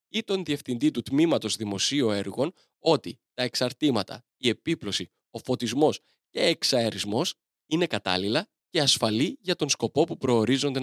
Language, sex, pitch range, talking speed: Greek, male, 110-155 Hz, 140 wpm